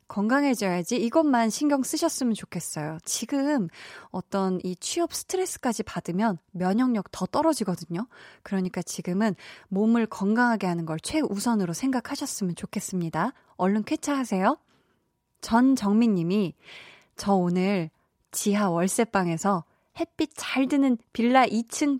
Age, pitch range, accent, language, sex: 20-39, 185-255 Hz, native, Korean, female